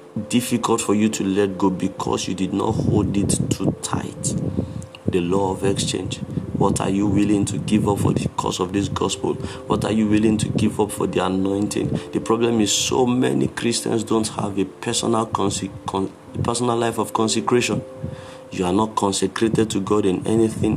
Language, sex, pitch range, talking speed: English, male, 100-125 Hz, 180 wpm